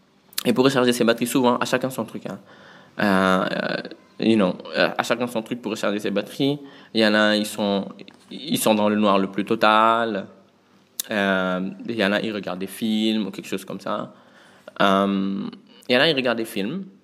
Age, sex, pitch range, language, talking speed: 20-39, male, 105-125 Hz, French, 210 wpm